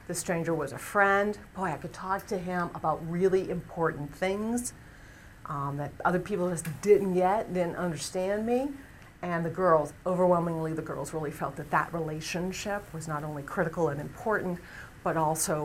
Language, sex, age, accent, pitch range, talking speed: English, female, 40-59, American, 160-205 Hz, 170 wpm